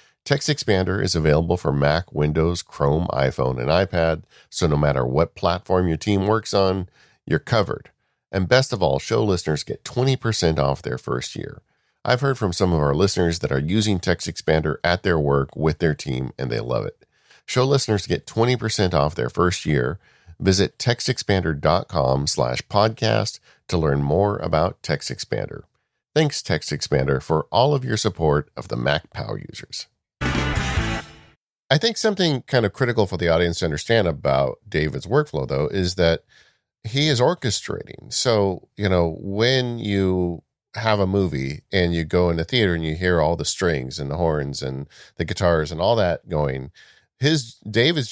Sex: male